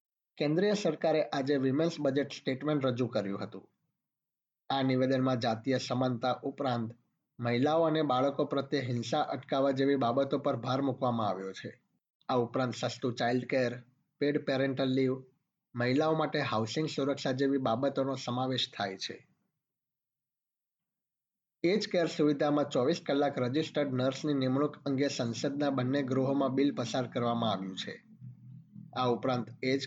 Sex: male